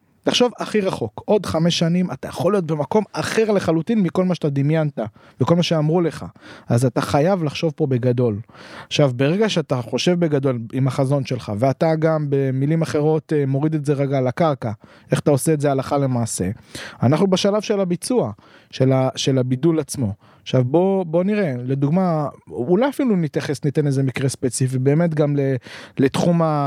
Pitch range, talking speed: 130-175 Hz, 165 wpm